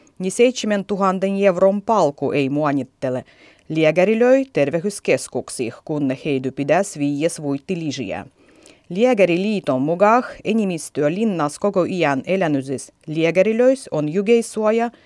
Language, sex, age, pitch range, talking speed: Finnish, female, 30-49, 140-205 Hz, 90 wpm